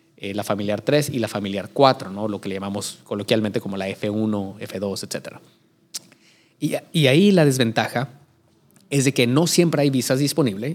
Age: 30-49